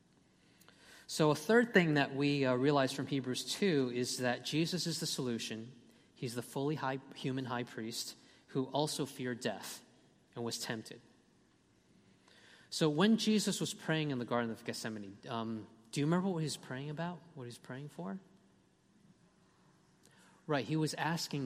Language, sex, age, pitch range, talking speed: English, male, 30-49, 125-175 Hz, 160 wpm